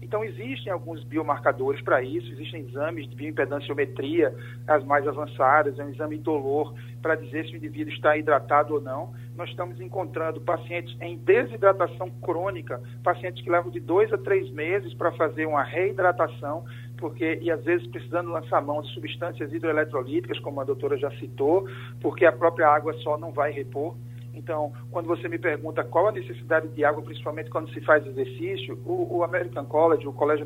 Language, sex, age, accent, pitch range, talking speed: Portuguese, male, 50-69, Brazilian, 120-170 Hz, 175 wpm